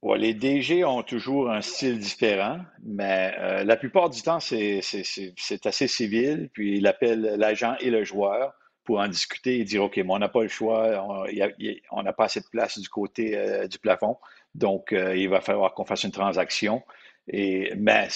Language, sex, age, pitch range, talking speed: French, male, 50-69, 95-120 Hz, 205 wpm